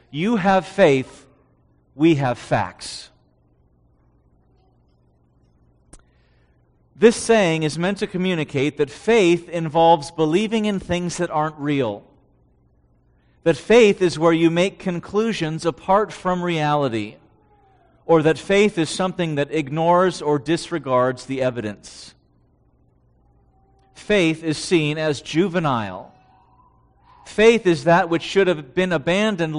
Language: English